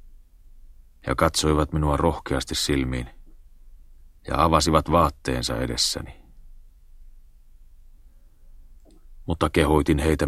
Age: 40-59